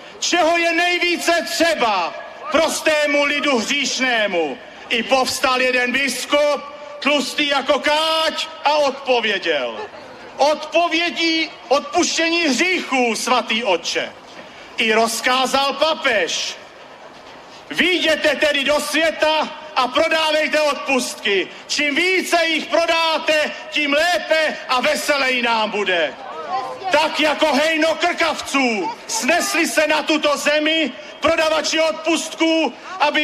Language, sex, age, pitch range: Slovak, male, 40-59, 290-325 Hz